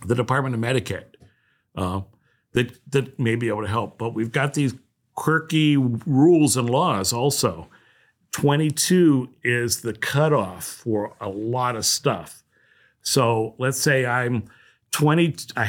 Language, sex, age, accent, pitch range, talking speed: English, male, 50-69, American, 110-135 Hz, 130 wpm